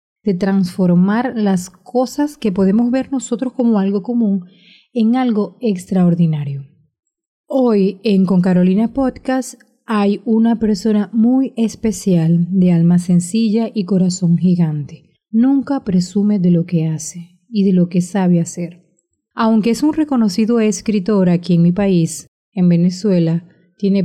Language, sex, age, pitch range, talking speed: Spanish, female, 30-49, 180-230 Hz, 135 wpm